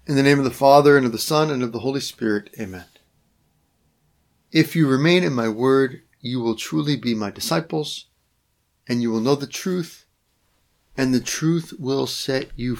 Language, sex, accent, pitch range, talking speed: English, male, American, 115-140 Hz, 190 wpm